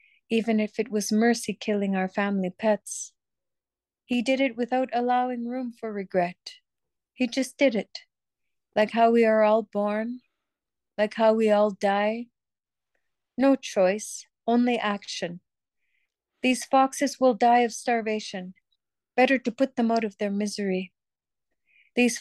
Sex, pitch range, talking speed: female, 195-240 Hz, 140 wpm